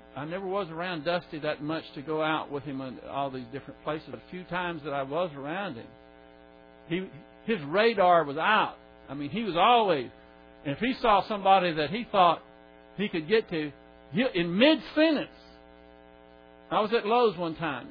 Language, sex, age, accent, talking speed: English, male, 60-79, American, 190 wpm